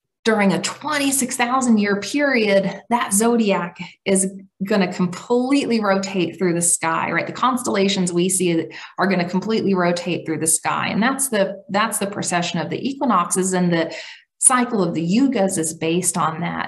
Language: English